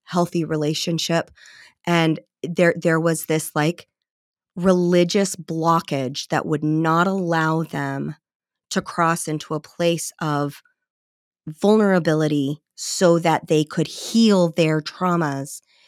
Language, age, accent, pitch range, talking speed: English, 20-39, American, 155-180 Hz, 110 wpm